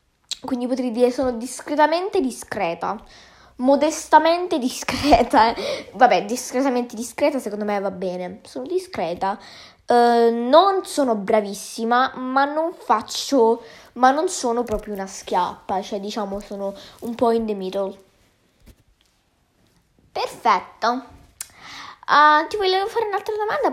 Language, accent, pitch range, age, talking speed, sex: Italian, native, 210-265 Hz, 10-29, 115 wpm, female